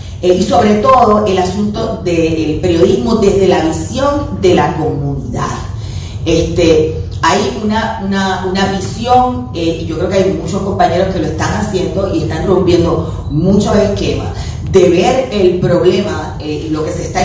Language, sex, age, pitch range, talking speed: Spanish, female, 30-49, 155-190 Hz, 150 wpm